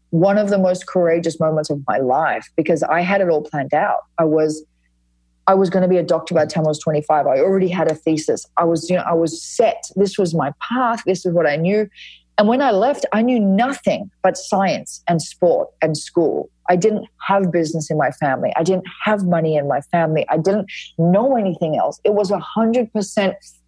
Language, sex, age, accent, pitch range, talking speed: English, female, 30-49, Australian, 160-200 Hz, 220 wpm